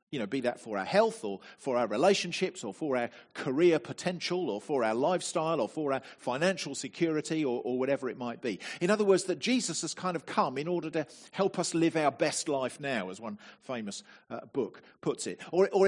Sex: male